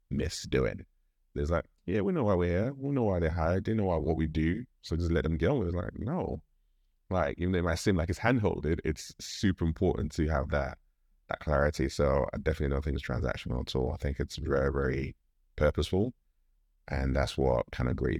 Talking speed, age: 230 wpm, 30-49